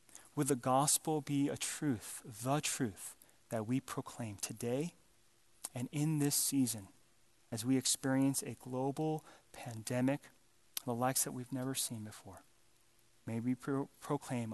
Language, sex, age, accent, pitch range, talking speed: English, male, 30-49, American, 115-130 Hz, 130 wpm